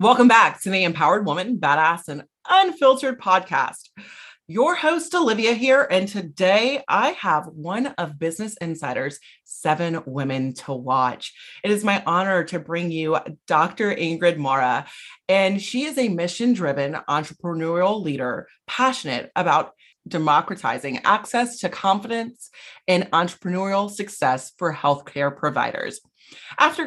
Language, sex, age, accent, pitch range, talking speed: English, female, 30-49, American, 155-230 Hz, 125 wpm